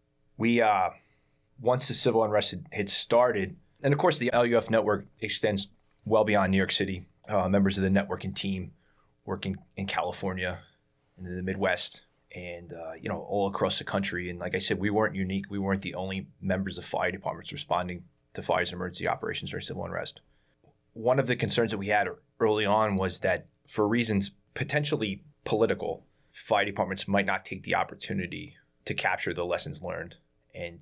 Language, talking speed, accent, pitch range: English, 185 wpm, American, 95-110 Hz